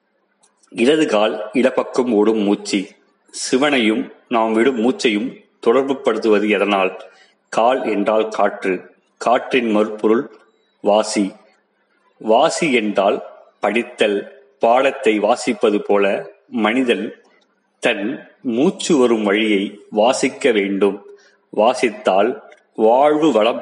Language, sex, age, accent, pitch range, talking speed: Tamil, male, 30-49, native, 100-120 Hz, 85 wpm